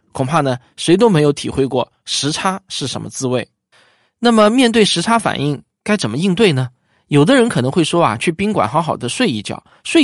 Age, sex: 20-39, male